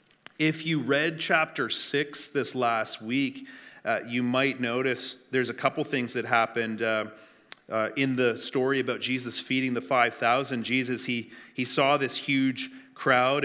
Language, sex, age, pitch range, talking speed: English, male, 30-49, 115-135 Hz, 155 wpm